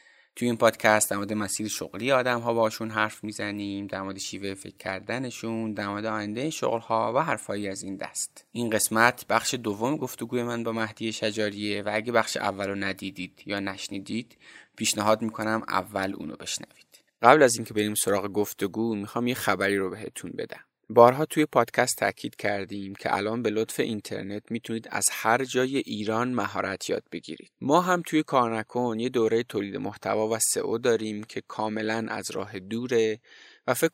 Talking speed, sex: 165 wpm, male